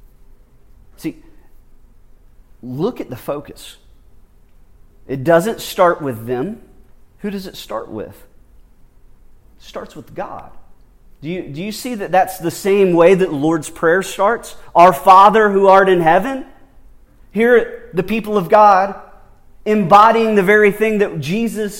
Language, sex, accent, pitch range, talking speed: English, male, American, 185-235 Hz, 140 wpm